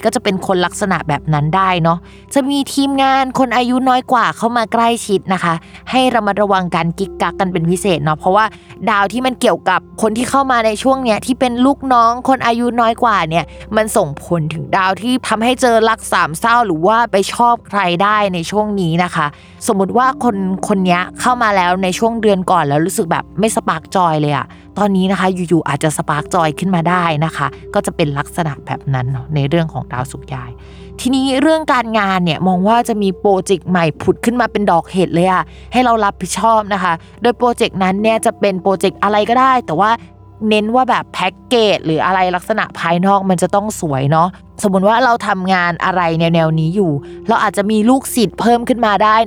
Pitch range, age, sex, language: 175-230 Hz, 20-39, female, Thai